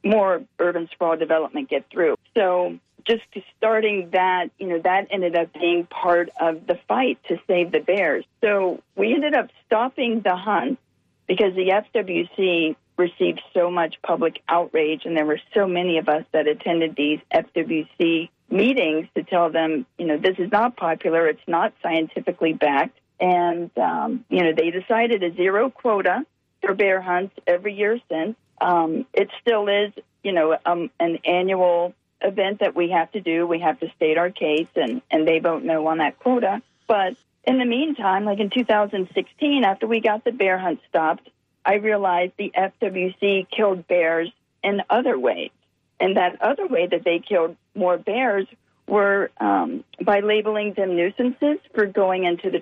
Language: English